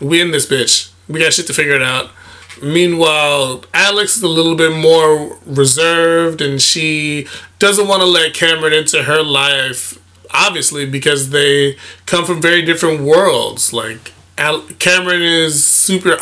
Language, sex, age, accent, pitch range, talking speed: English, male, 20-39, American, 135-165 Hz, 150 wpm